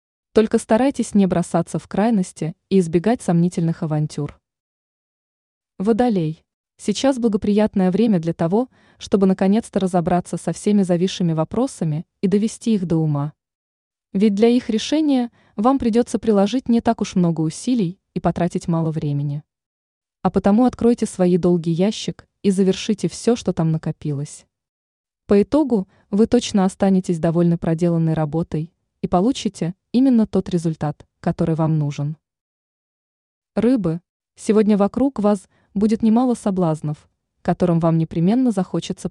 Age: 20-39